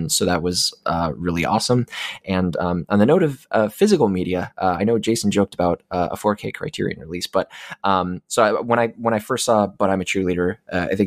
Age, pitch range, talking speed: 20-39, 90-115 Hz, 220 wpm